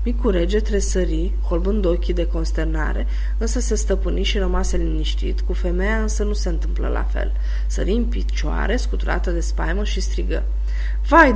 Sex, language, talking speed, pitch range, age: female, Romanian, 165 wpm, 165-215 Hz, 20-39